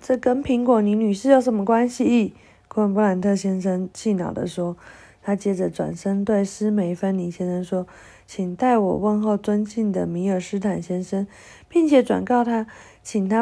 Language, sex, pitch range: Chinese, female, 175-220 Hz